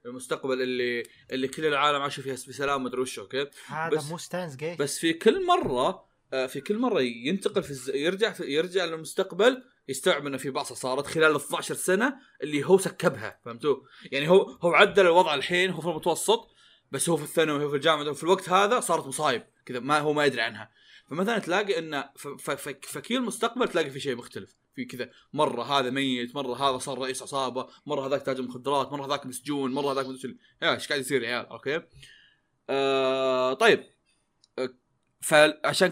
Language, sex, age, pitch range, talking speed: Arabic, male, 20-39, 135-175 Hz, 170 wpm